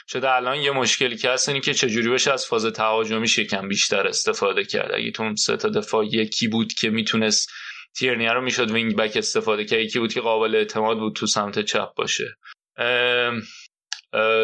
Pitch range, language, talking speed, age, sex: 115-150 Hz, Persian, 185 wpm, 20-39, male